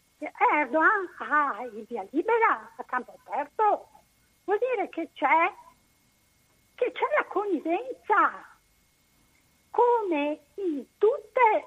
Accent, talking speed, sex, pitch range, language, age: native, 105 wpm, female, 275-365 Hz, Italian, 60-79